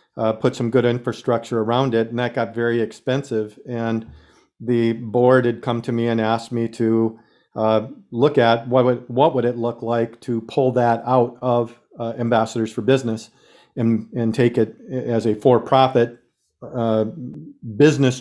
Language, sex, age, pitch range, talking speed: English, male, 40-59, 115-130 Hz, 170 wpm